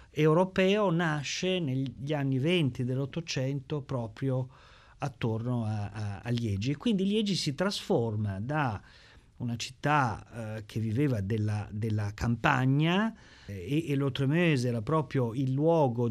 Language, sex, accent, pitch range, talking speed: Italian, male, native, 125-165 Hz, 125 wpm